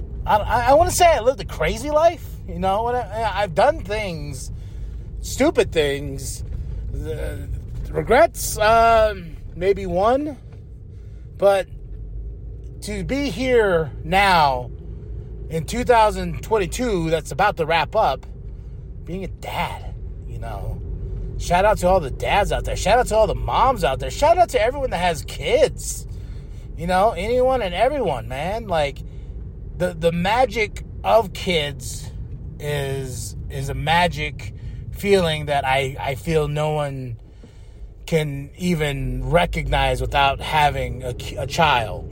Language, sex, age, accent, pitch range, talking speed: English, male, 30-49, American, 130-205 Hz, 130 wpm